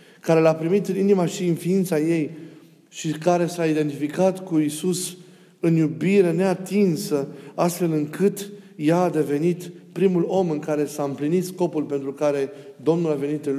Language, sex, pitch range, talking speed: Romanian, male, 145-180 Hz, 160 wpm